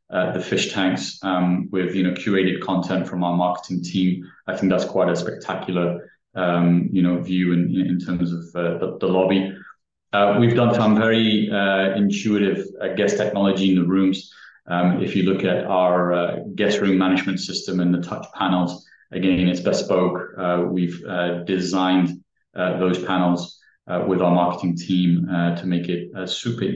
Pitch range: 90-95 Hz